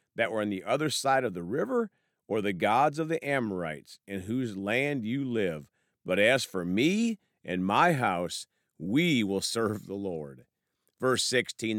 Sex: male